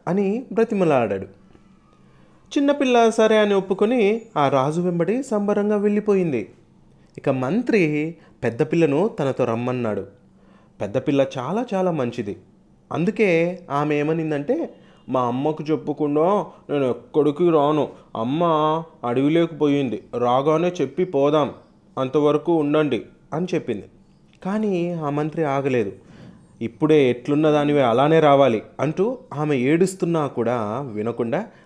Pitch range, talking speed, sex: 120-170 Hz, 100 wpm, male